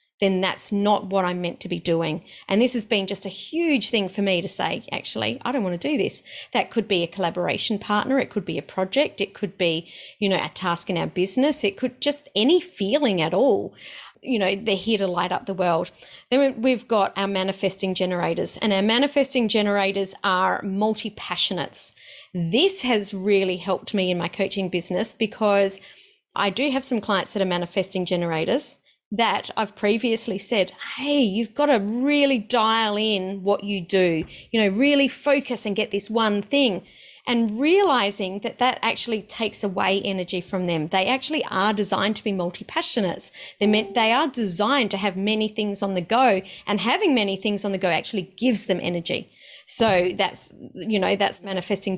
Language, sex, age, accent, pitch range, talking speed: English, female, 30-49, Australian, 190-235 Hz, 190 wpm